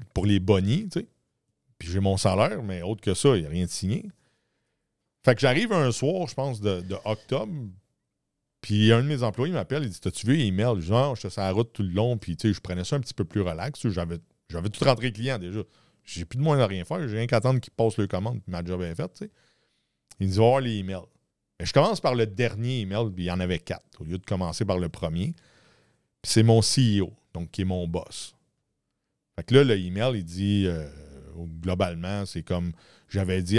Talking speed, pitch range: 240 wpm, 90-120 Hz